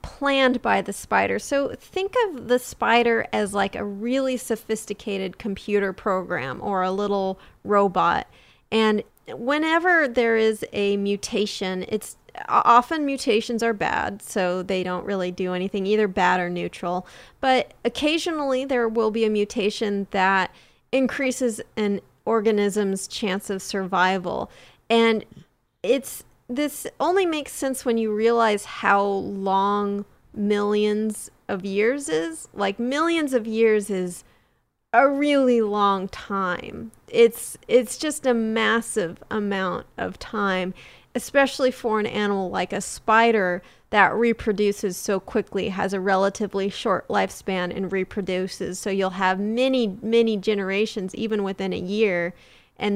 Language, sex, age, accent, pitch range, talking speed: English, female, 30-49, American, 195-235 Hz, 130 wpm